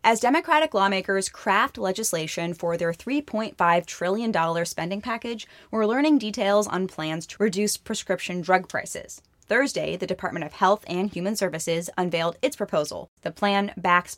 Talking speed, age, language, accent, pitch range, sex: 150 wpm, 10-29, English, American, 170-205 Hz, female